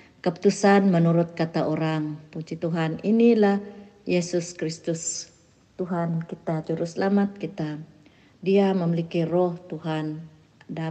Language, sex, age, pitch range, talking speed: Malay, female, 50-69, 170-210 Hz, 100 wpm